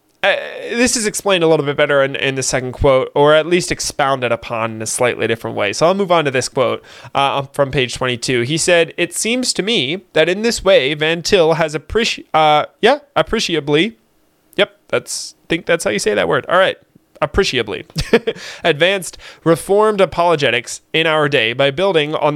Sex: male